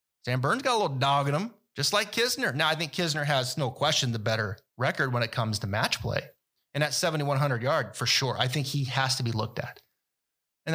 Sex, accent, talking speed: male, American, 235 wpm